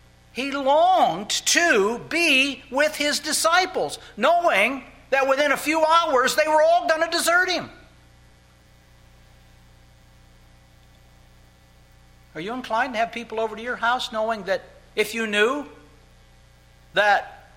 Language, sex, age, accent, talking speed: English, male, 60-79, American, 125 wpm